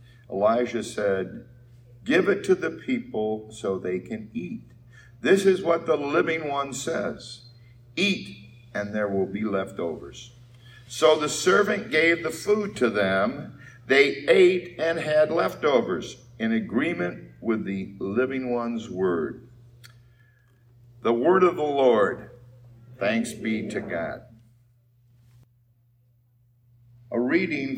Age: 50-69